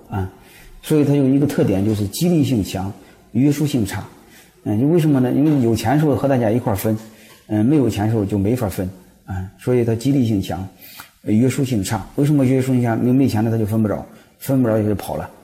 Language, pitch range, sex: Chinese, 100-120 Hz, male